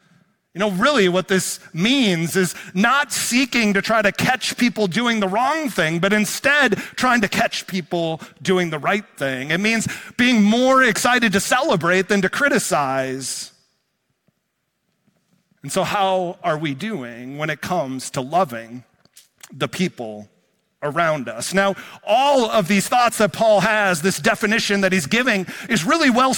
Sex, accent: male, American